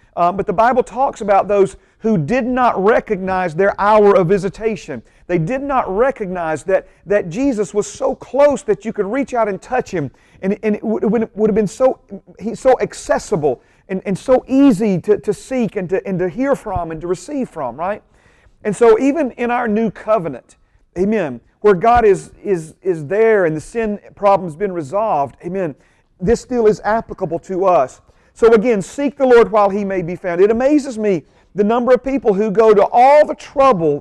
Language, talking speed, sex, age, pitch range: English, 200 wpm, male, 40-59, 190-240 Hz